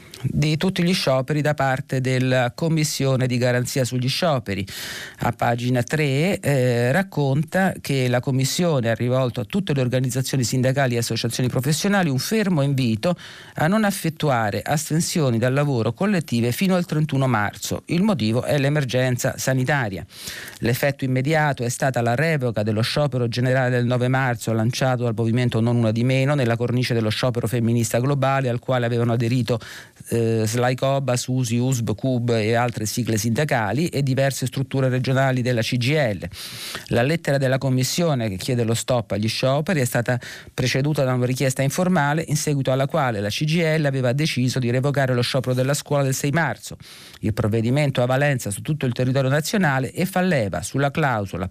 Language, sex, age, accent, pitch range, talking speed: Italian, male, 40-59, native, 120-150 Hz, 165 wpm